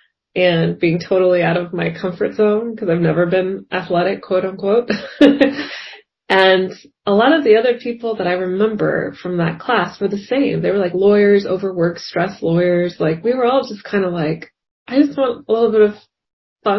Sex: female